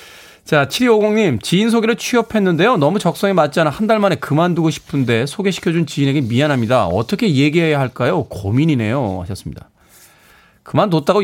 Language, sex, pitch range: Korean, male, 120-175 Hz